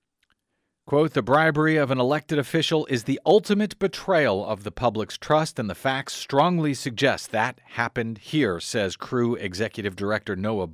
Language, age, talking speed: English, 40-59, 155 wpm